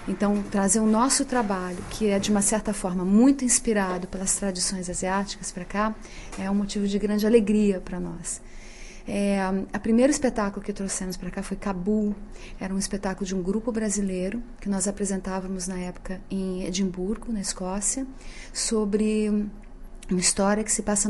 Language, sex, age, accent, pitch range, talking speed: Portuguese, female, 30-49, Brazilian, 195-220 Hz, 165 wpm